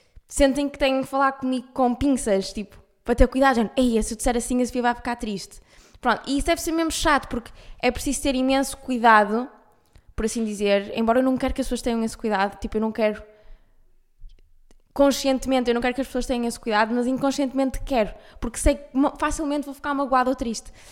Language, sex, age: Portuguese, female, 10-29